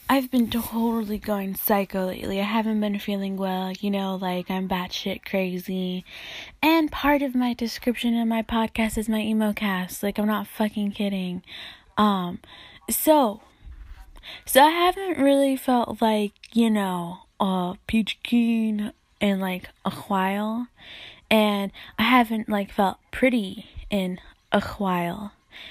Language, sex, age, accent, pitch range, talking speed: English, female, 10-29, American, 200-245 Hz, 140 wpm